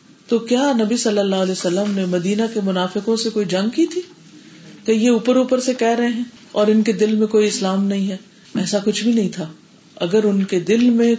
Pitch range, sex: 185-225 Hz, female